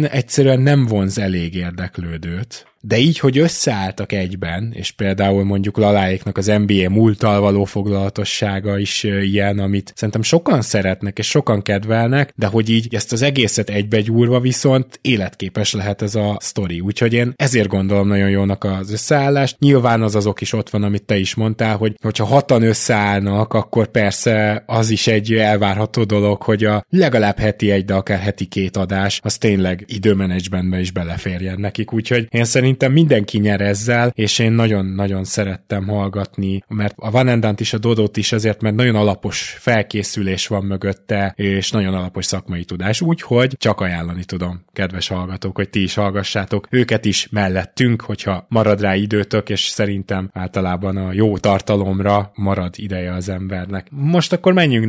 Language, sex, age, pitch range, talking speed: Hungarian, male, 20-39, 100-115 Hz, 160 wpm